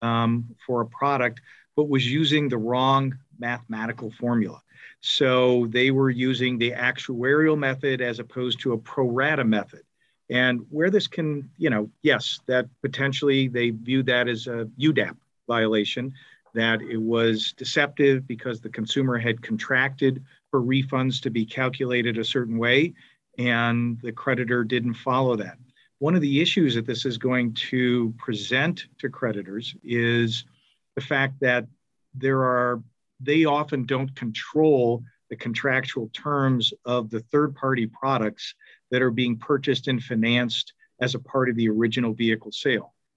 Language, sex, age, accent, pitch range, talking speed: English, male, 50-69, American, 120-135 Hz, 145 wpm